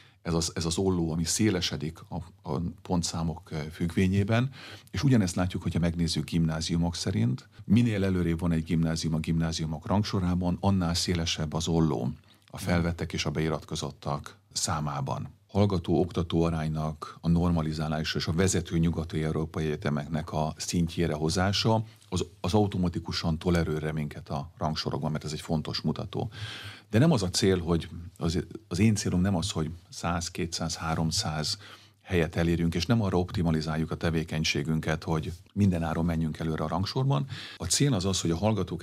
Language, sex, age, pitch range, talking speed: Hungarian, male, 40-59, 80-100 Hz, 150 wpm